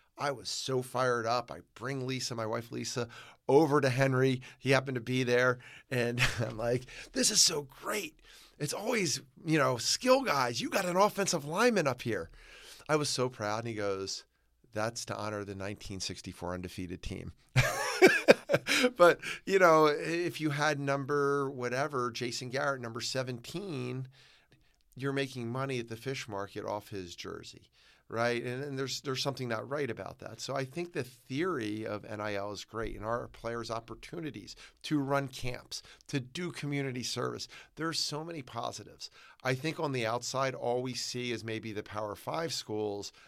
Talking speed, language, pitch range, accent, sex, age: 170 wpm, English, 105-135 Hz, American, male, 50-69